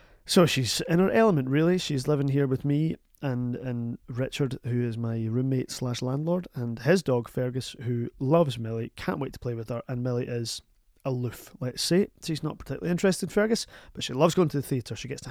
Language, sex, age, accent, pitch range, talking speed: English, male, 30-49, British, 120-150 Hz, 215 wpm